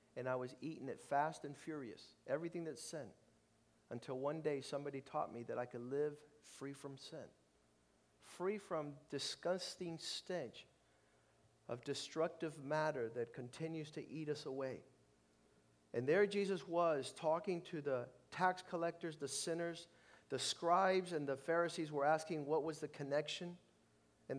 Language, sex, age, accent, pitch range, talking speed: English, male, 50-69, American, 120-155 Hz, 150 wpm